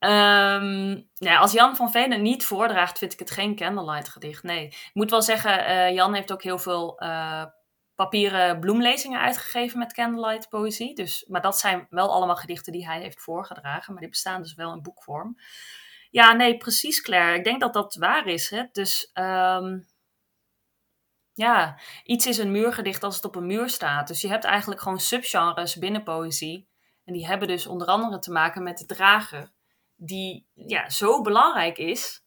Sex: female